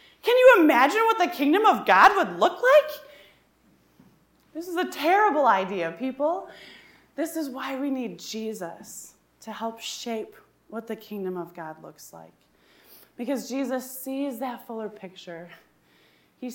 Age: 20-39